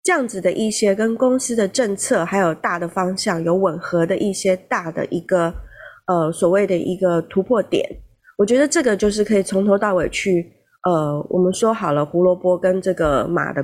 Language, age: Chinese, 20-39